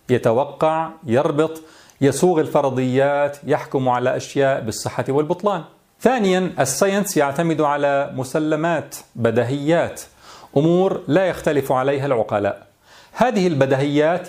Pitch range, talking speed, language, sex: 130-170 Hz, 90 wpm, Arabic, male